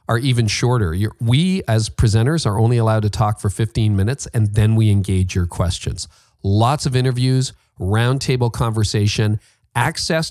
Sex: male